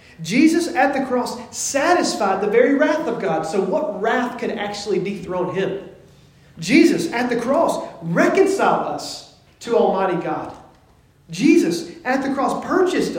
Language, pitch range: English, 165-270 Hz